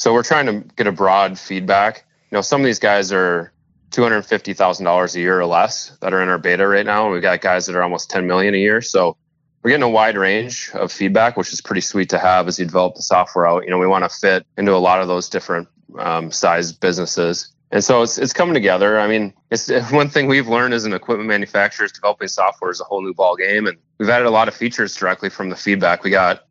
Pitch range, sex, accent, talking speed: 90-110 Hz, male, American, 265 wpm